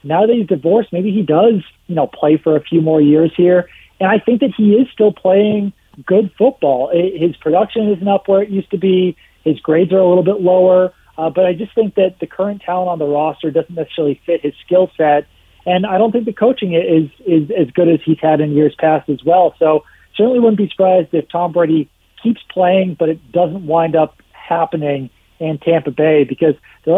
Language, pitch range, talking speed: English, 160-200 Hz, 220 wpm